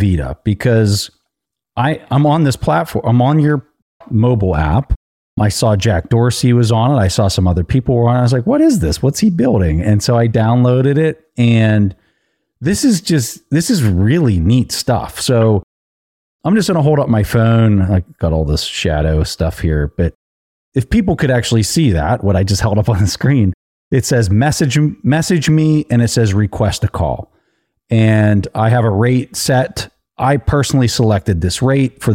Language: English